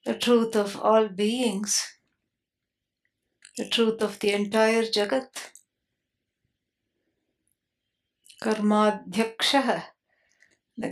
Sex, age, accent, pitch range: female, 60-79, Indian, 205-230 Hz